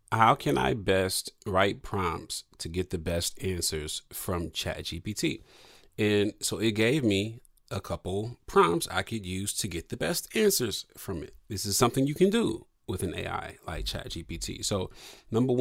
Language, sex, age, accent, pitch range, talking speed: English, male, 30-49, American, 100-120 Hz, 175 wpm